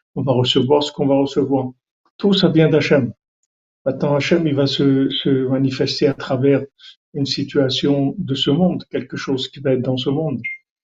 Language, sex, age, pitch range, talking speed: French, male, 50-69, 130-150 Hz, 185 wpm